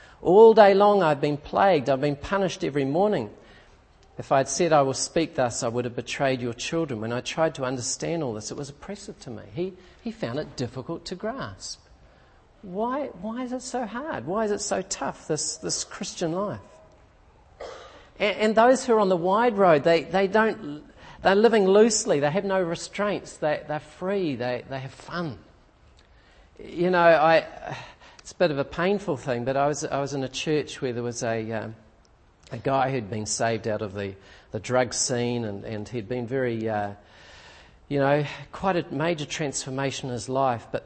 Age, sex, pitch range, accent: 40-59, male, 120-175 Hz, Australian